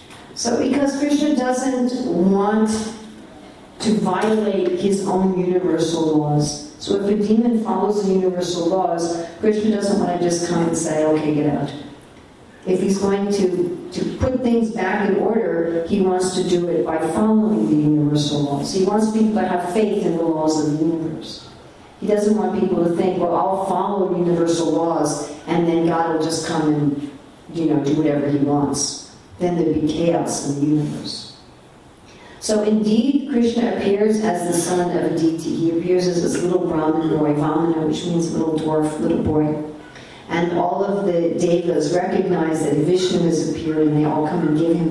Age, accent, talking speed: 50-69, American, 180 wpm